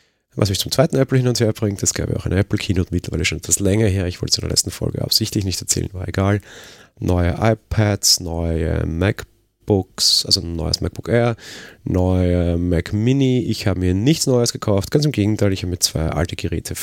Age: 30-49